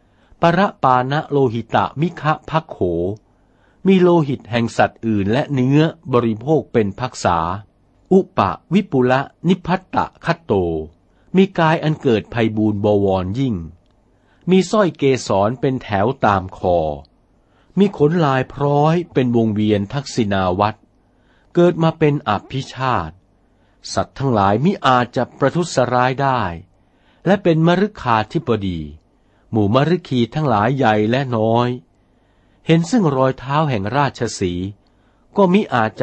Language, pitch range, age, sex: Thai, 100-145 Hz, 60-79, male